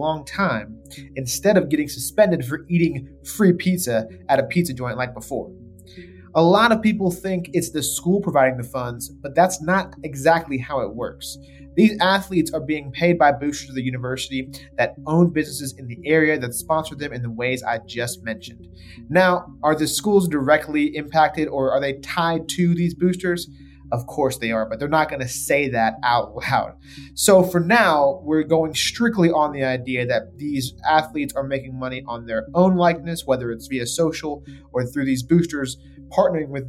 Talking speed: 185 wpm